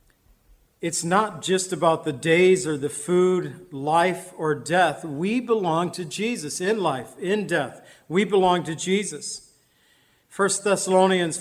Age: 50-69